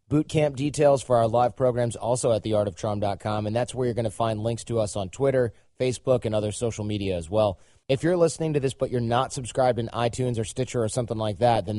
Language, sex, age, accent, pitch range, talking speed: English, male, 30-49, American, 110-130 Hz, 235 wpm